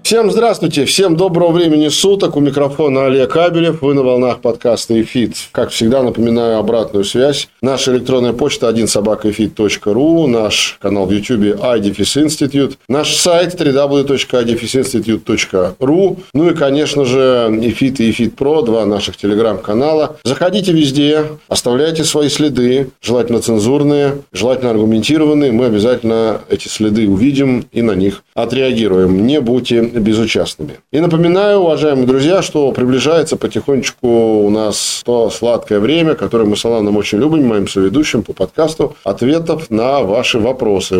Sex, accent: male, native